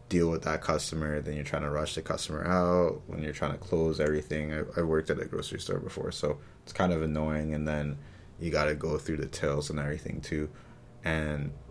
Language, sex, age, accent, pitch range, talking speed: English, male, 20-39, American, 75-85 Hz, 225 wpm